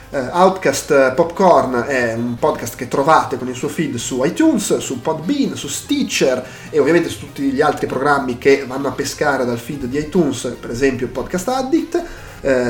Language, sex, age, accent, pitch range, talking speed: Italian, male, 30-49, native, 130-185 Hz, 175 wpm